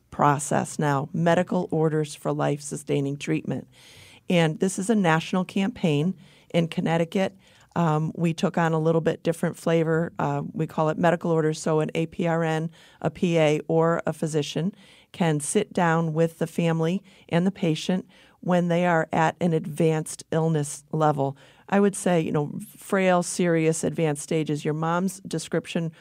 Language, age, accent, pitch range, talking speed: English, 40-59, American, 155-180 Hz, 155 wpm